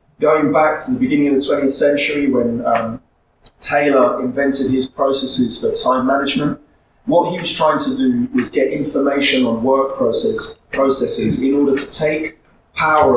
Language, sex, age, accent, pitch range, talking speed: Swedish, male, 30-49, British, 130-215 Hz, 165 wpm